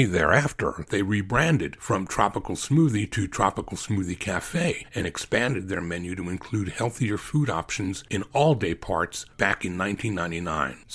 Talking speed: 135 wpm